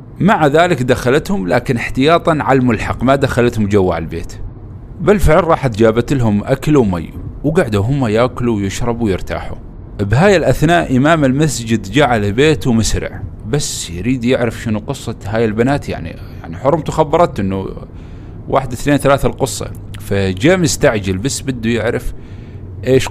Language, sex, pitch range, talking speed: Arabic, male, 100-130 Hz, 140 wpm